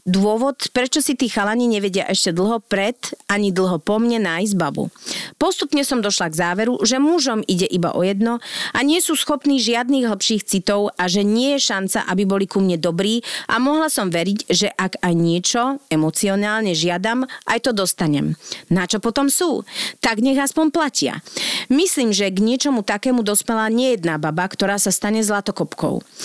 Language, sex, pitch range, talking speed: Slovak, female, 190-245 Hz, 175 wpm